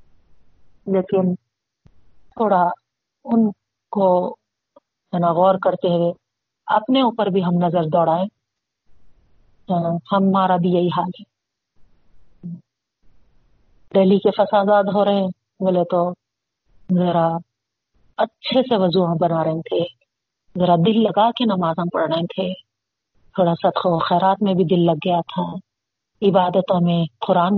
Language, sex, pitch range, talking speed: Urdu, female, 170-200 Hz, 120 wpm